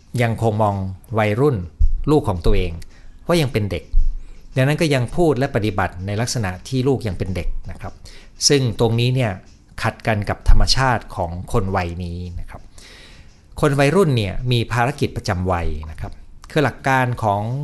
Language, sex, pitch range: Thai, male, 90-130 Hz